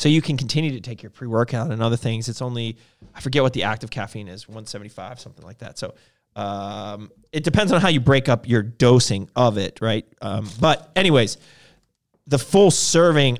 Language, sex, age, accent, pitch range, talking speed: English, male, 30-49, American, 110-140 Hz, 200 wpm